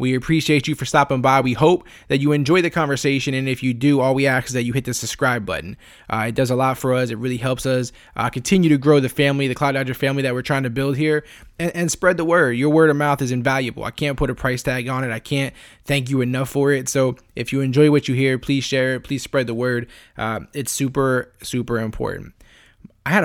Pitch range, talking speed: 125-145 Hz, 260 wpm